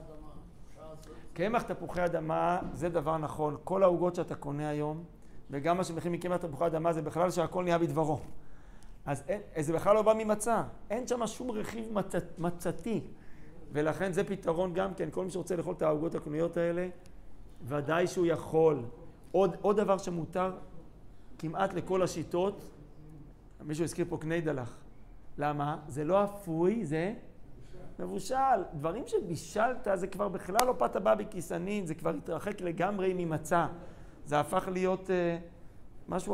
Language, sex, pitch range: Hebrew, male, 155-195 Hz